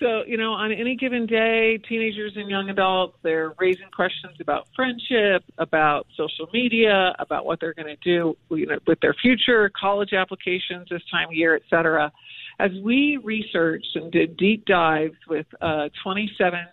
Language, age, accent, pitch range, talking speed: English, 50-69, American, 165-220 Hz, 165 wpm